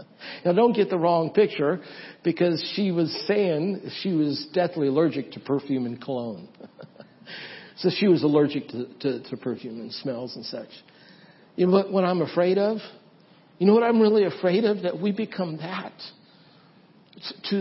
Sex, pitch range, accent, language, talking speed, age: male, 190-235 Hz, American, English, 165 wpm, 60-79